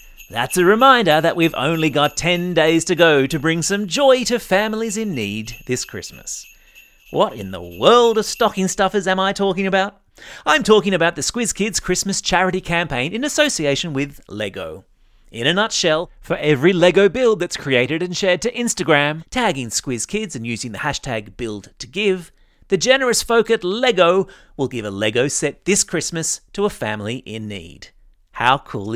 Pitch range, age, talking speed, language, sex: 135-200 Hz, 30-49, 180 wpm, English, male